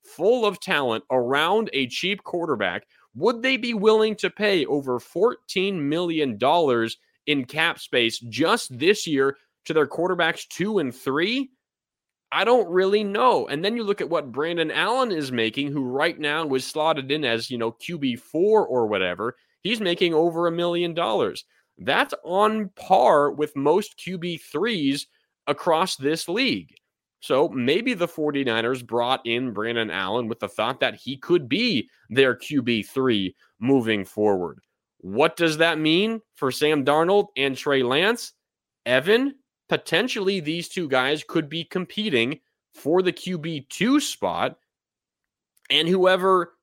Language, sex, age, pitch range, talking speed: English, male, 30-49, 135-210 Hz, 145 wpm